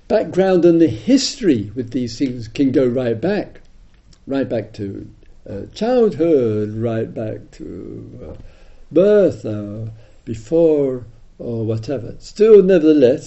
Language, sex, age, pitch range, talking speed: English, male, 60-79, 115-170 Hz, 120 wpm